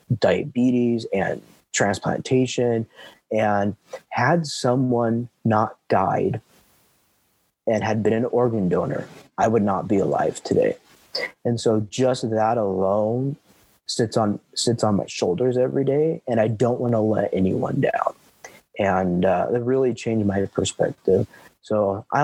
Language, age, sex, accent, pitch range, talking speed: English, 30-49, male, American, 105-130 Hz, 135 wpm